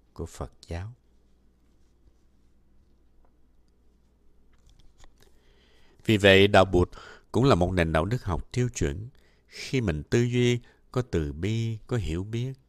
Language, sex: Vietnamese, male